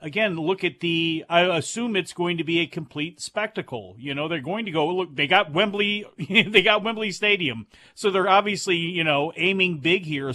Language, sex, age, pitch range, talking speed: English, male, 40-59, 155-195 Hz, 205 wpm